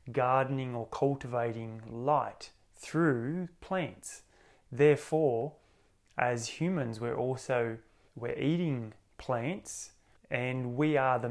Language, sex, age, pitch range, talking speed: English, male, 20-39, 115-140 Hz, 95 wpm